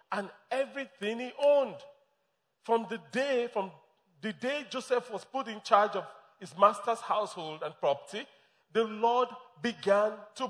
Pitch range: 195-255 Hz